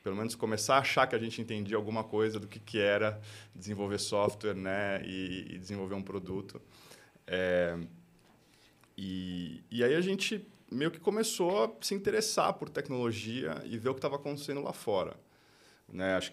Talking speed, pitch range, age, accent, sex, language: 175 wpm, 95-115 Hz, 20-39, Brazilian, male, Portuguese